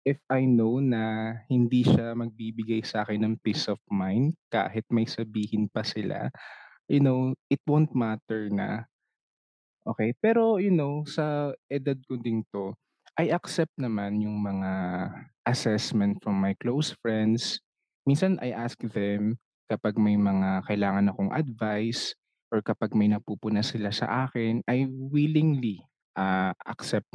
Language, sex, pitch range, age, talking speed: Filipino, male, 105-150 Hz, 20-39, 140 wpm